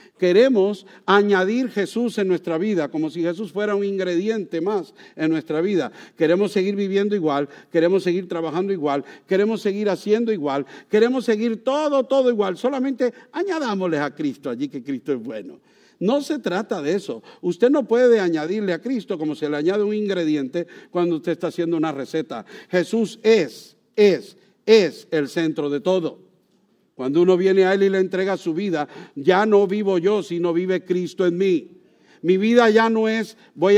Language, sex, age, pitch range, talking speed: English, male, 50-69, 175-225 Hz, 175 wpm